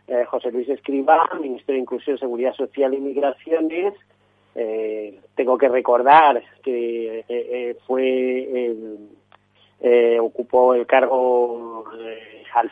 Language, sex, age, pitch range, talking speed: Spanish, male, 30-49, 120-165 Hz, 120 wpm